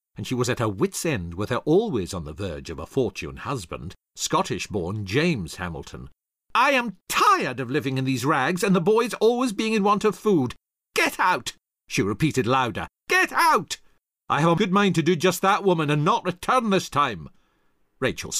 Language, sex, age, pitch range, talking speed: English, male, 50-69, 110-175 Hz, 195 wpm